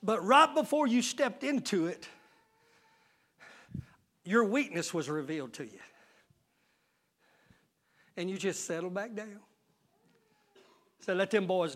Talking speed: 115 wpm